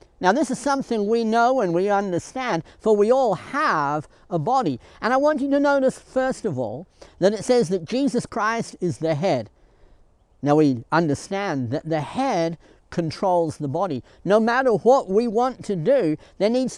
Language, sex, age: English, male, 60-79